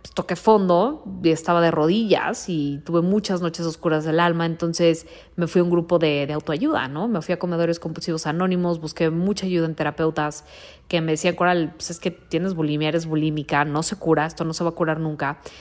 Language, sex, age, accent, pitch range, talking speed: Spanish, female, 20-39, Mexican, 160-205 Hz, 205 wpm